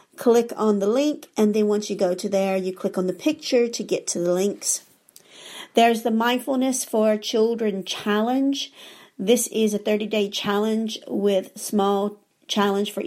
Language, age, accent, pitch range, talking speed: English, 50-69, American, 190-225 Hz, 165 wpm